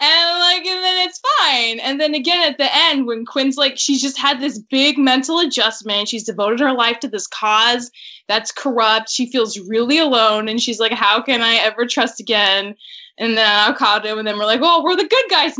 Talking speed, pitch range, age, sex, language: 225 wpm, 225-300 Hz, 10-29, female, English